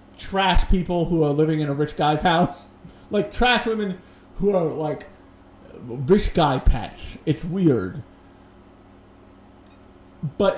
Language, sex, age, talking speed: English, male, 40-59, 125 wpm